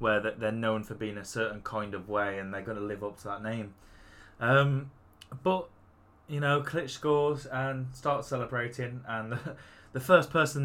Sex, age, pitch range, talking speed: male, 10-29, 105-125 Hz, 180 wpm